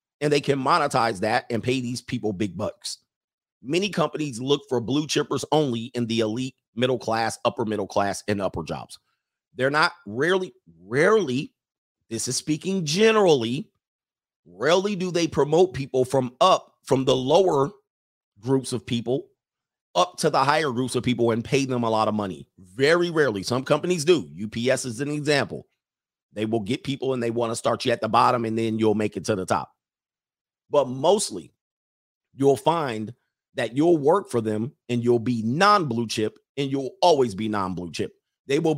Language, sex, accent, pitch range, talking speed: English, male, American, 110-145 Hz, 180 wpm